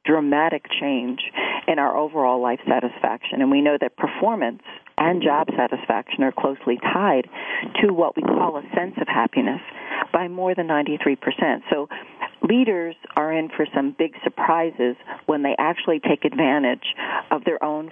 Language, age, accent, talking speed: English, 40-59, American, 155 wpm